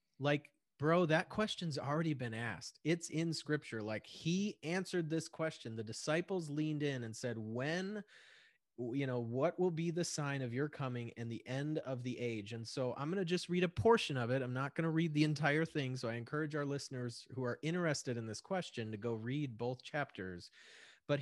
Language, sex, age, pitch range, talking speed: English, male, 30-49, 125-170 Hz, 210 wpm